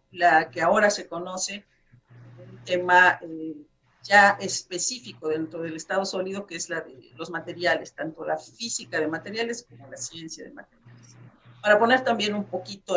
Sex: female